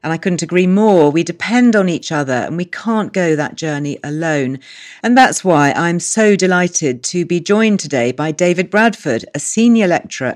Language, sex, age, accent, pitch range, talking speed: English, female, 40-59, British, 150-210 Hz, 190 wpm